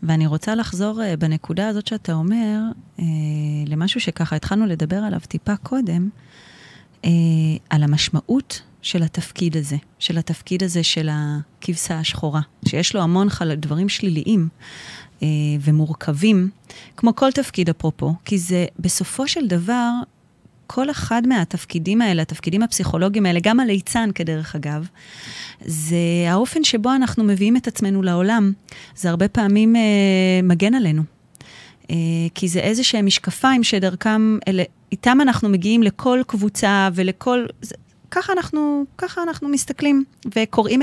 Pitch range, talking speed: 165-225 Hz, 125 wpm